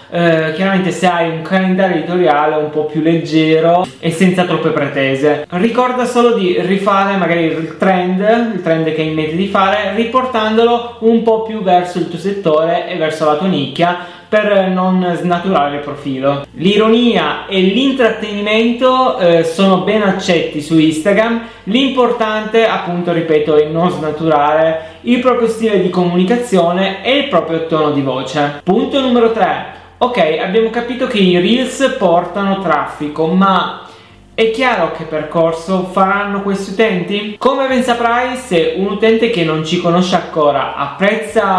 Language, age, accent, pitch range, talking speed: Italian, 20-39, native, 160-220 Hz, 150 wpm